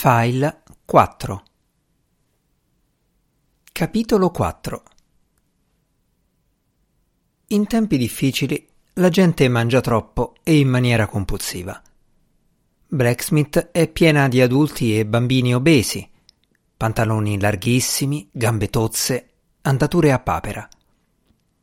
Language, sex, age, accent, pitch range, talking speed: Italian, male, 50-69, native, 110-155 Hz, 85 wpm